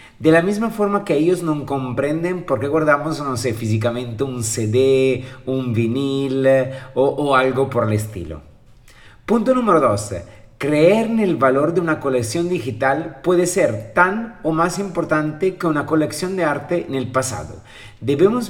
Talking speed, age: 160 wpm, 40-59